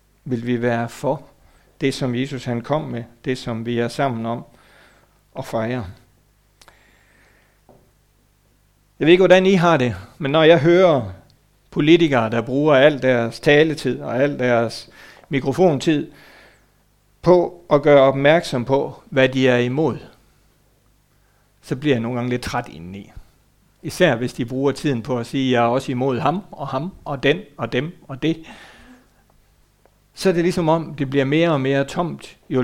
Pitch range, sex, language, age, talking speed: 120-150 Hz, male, Danish, 60-79, 165 wpm